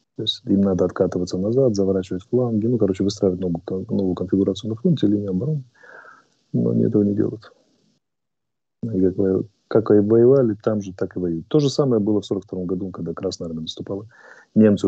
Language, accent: Russian, native